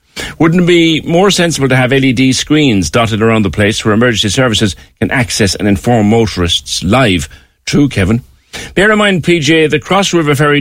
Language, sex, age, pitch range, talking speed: English, male, 50-69, 85-140 Hz, 180 wpm